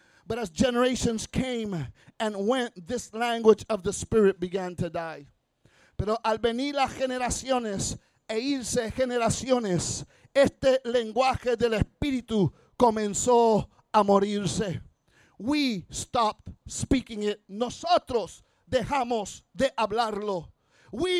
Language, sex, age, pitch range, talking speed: English, male, 50-69, 220-275 Hz, 110 wpm